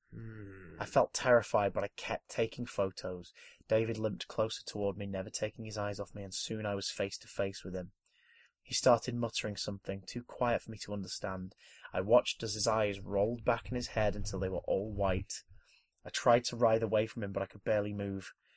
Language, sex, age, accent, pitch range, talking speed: English, male, 20-39, British, 100-115 Hz, 210 wpm